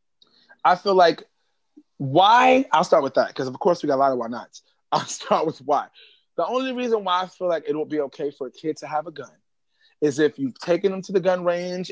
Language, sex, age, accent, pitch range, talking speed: English, male, 30-49, American, 170-230 Hz, 245 wpm